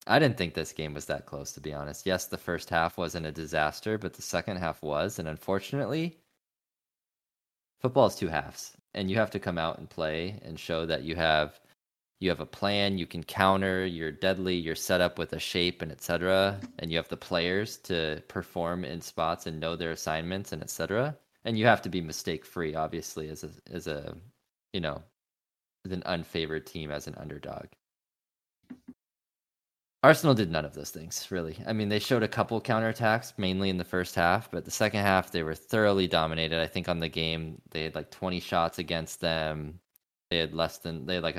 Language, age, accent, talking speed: English, 20-39, American, 205 wpm